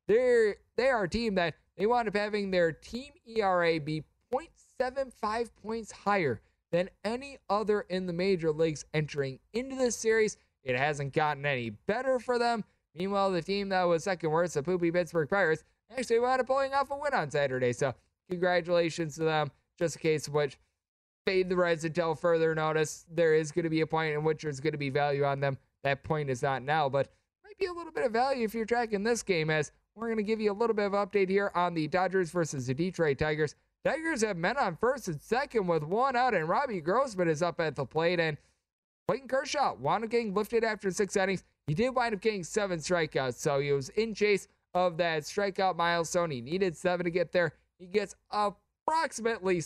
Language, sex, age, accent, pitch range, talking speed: English, male, 20-39, American, 155-210 Hz, 210 wpm